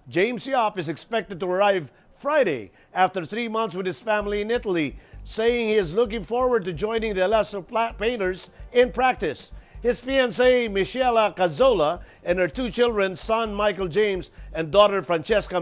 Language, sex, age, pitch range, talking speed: English, male, 50-69, 180-230 Hz, 160 wpm